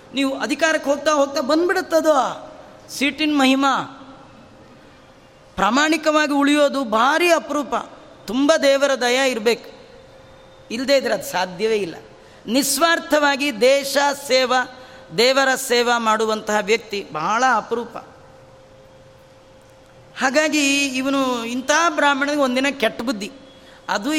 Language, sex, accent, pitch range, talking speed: Kannada, female, native, 235-290 Hz, 95 wpm